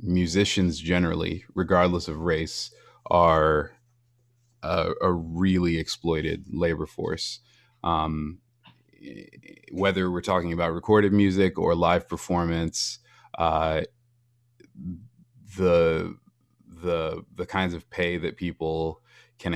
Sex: male